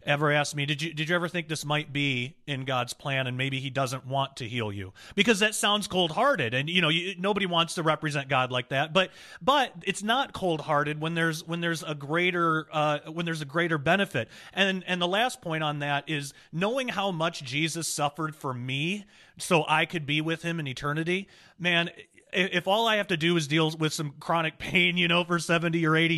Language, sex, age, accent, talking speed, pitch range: English, male, 30-49, American, 225 wpm, 145-180 Hz